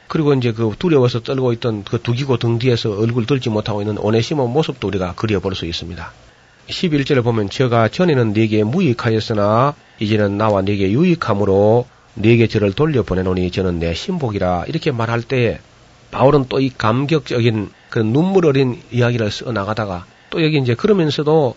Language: Korean